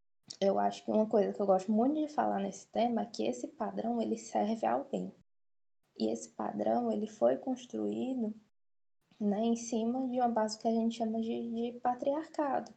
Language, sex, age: Portuguese, female, 10-29